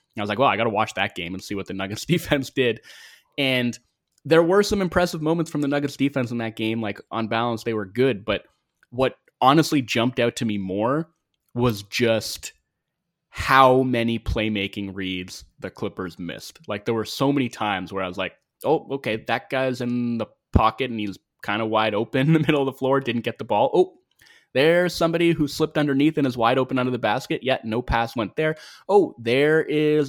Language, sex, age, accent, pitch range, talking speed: English, male, 20-39, American, 115-150 Hz, 215 wpm